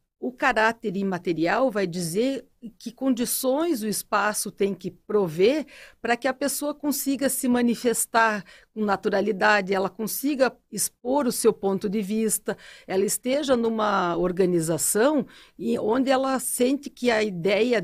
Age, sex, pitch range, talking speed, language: 50-69, female, 195-255 Hz, 130 wpm, Portuguese